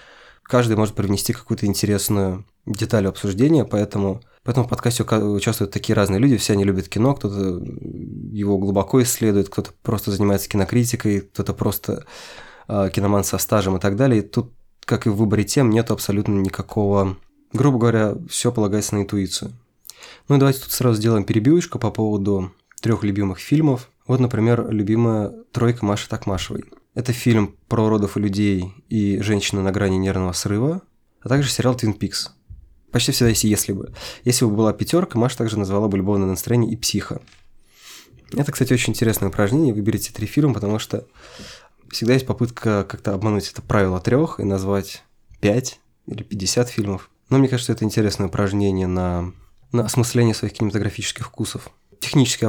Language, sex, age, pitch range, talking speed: Russian, male, 20-39, 100-120 Hz, 160 wpm